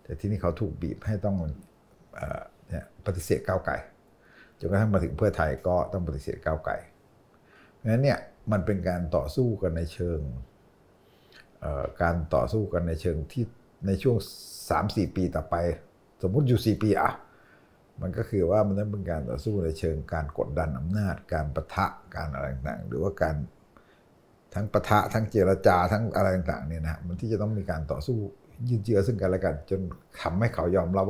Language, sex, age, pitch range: Thai, male, 60-79, 85-105 Hz